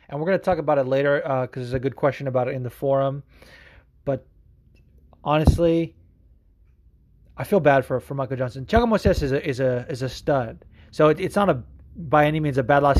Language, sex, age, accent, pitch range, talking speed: English, male, 30-49, American, 130-150 Hz, 220 wpm